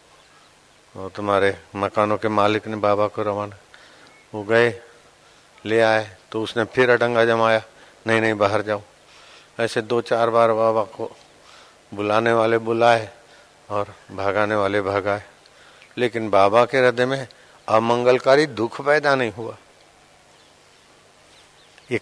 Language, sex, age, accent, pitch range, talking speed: Hindi, male, 50-69, native, 105-125 Hz, 125 wpm